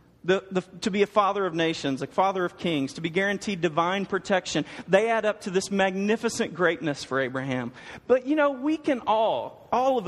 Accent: American